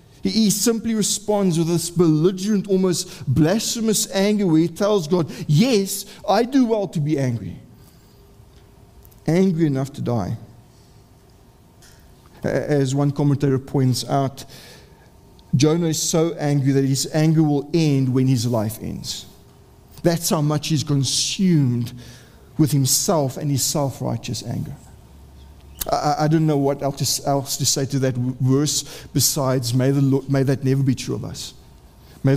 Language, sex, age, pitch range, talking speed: English, male, 50-69, 130-180 Hz, 135 wpm